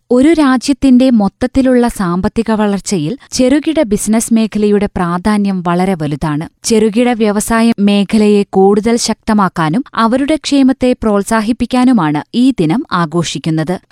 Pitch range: 190-245 Hz